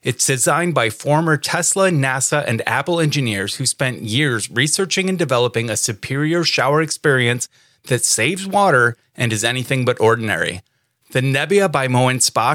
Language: English